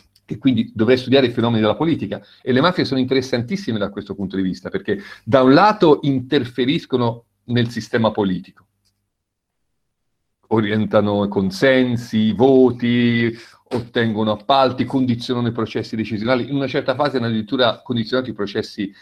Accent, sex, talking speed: native, male, 145 wpm